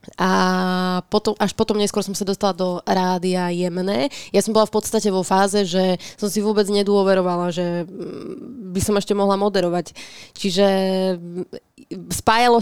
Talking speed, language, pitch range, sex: 145 wpm, Slovak, 175-210 Hz, female